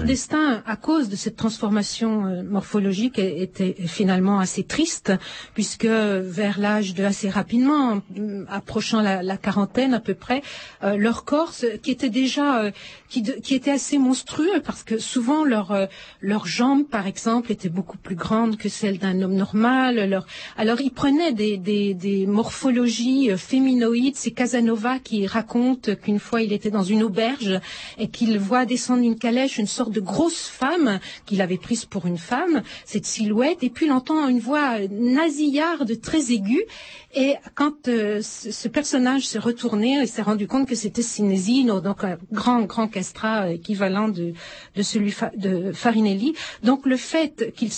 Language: French